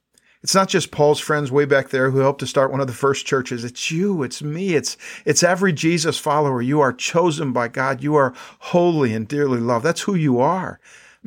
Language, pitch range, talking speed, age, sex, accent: English, 120-150 Hz, 225 wpm, 50-69, male, American